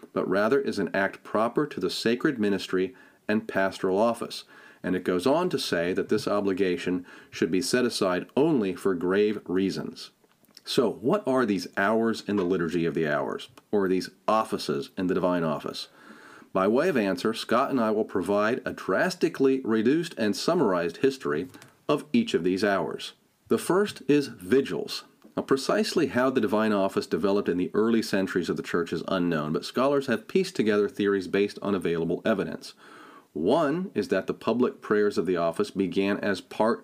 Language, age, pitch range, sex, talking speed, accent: English, 40-59, 95-120 Hz, male, 180 wpm, American